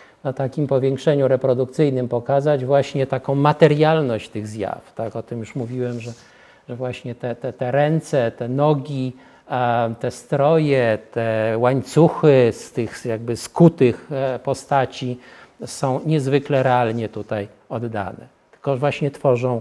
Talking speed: 120 wpm